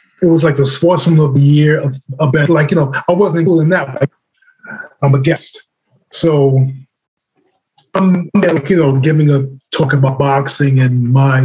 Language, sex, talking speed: English, male, 190 wpm